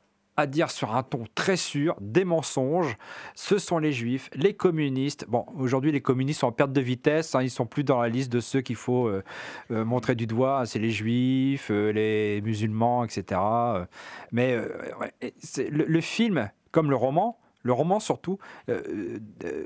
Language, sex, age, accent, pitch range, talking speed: French, male, 40-59, French, 110-155 Hz, 190 wpm